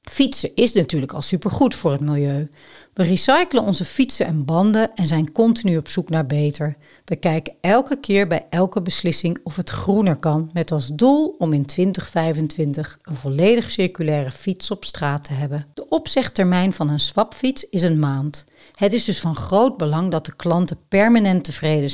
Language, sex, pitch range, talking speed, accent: Dutch, female, 155-205 Hz, 180 wpm, Dutch